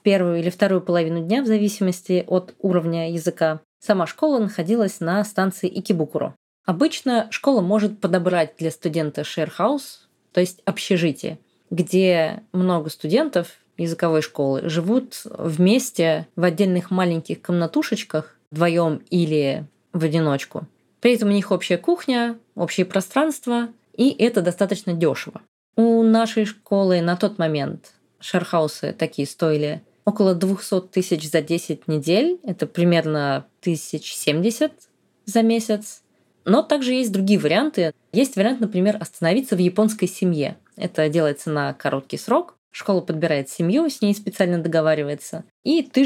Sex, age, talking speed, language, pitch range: female, 20-39, 130 wpm, Russian, 165-220 Hz